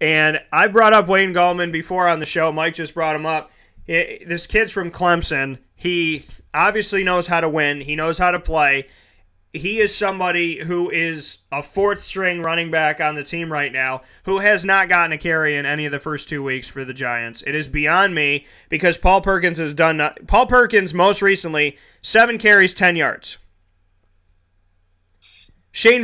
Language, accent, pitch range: English, American, 150-195 Hz